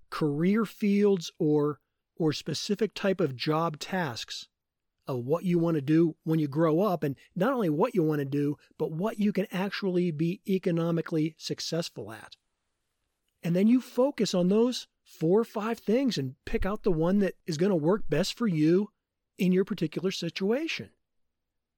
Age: 40-59